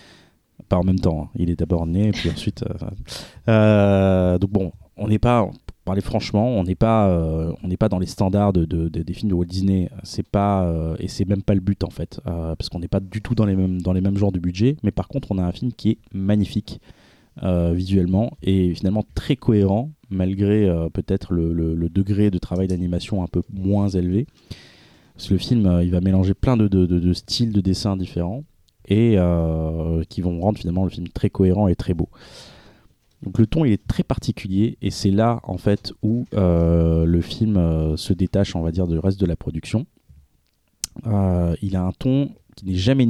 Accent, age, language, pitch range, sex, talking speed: French, 20-39, French, 90-105 Hz, male, 225 wpm